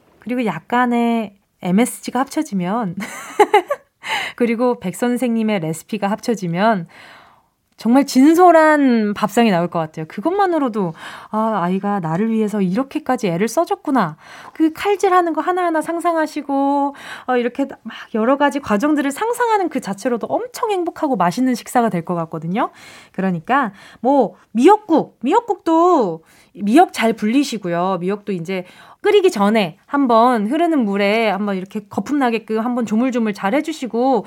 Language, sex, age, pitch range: Korean, female, 20-39, 205-305 Hz